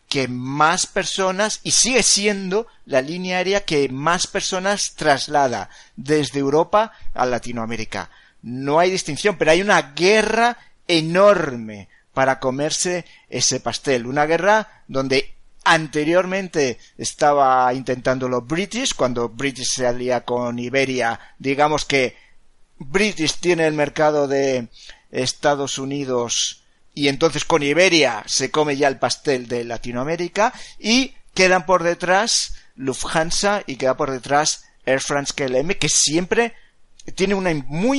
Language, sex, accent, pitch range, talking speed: Spanish, male, Spanish, 130-185 Hz, 125 wpm